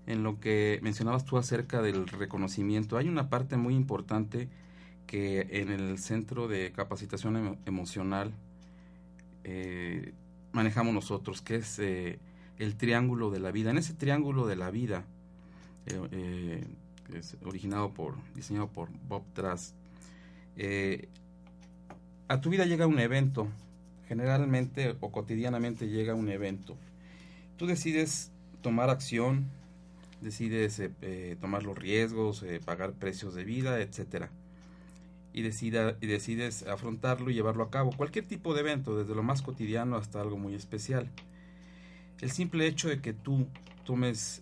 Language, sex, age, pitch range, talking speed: Spanish, male, 50-69, 90-125 Hz, 140 wpm